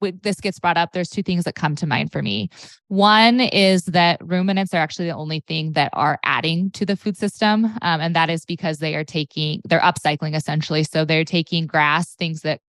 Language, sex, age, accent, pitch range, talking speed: English, female, 20-39, American, 155-185 Hz, 220 wpm